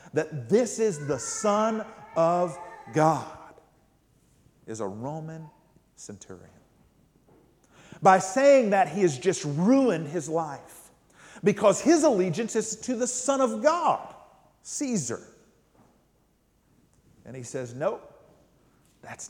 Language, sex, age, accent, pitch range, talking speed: English, male, 50-69, American, 115-175 Hz, 110 wpm